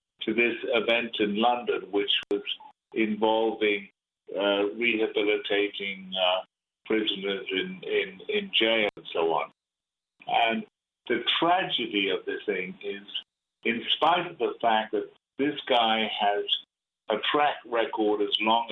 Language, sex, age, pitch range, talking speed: English, male, 50-69, 100-140 Hz, 130 wpm